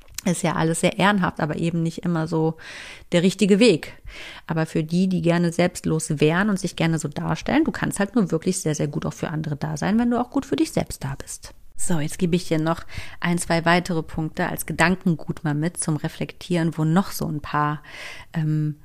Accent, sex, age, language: German, female, 40-59, German